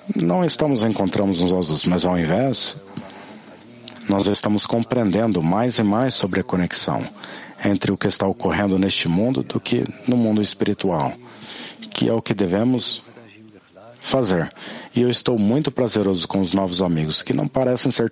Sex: male